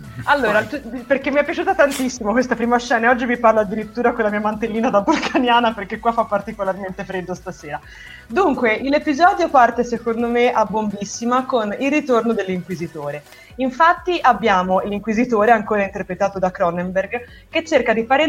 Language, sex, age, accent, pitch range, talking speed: Italian, female, 20-39, native, 185-245 Hz, 160 wpm